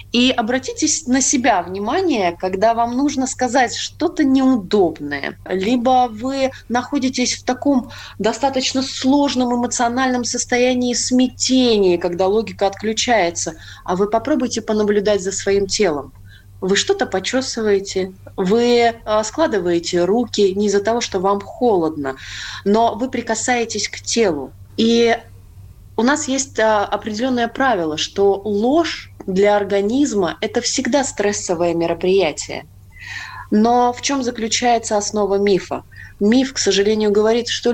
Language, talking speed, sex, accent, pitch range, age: Russian, 115 wpm, female, native, 190-250 Hz, 20-39